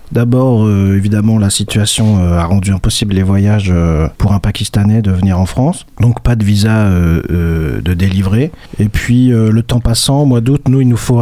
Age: 40-59